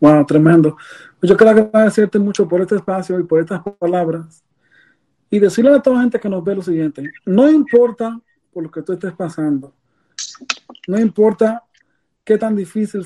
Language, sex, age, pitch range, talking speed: Spanish, male, 40-59, 170-215 Hz, 170 wpm